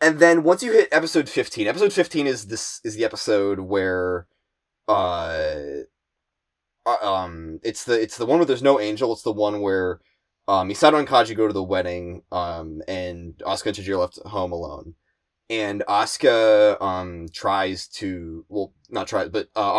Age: 20-39